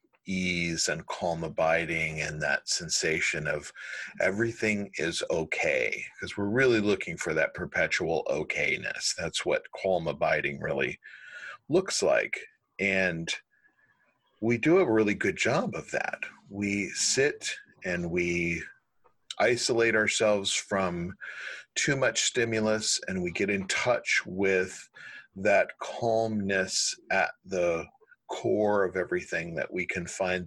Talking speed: 120 wpm